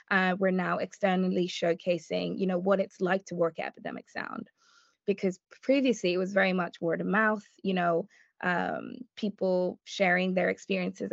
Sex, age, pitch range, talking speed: female, 20-39, 175-200 Hz, 165 wpm